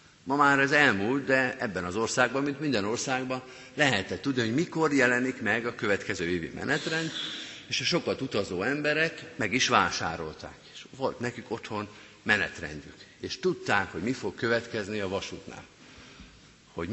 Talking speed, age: 150 wpm, 50-69